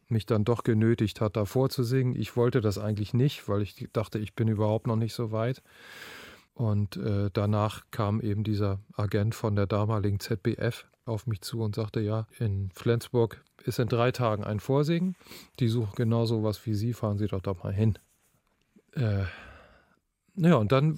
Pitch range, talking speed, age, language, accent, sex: 105-125 Hz, 185 wpm, 40-59, German, German, male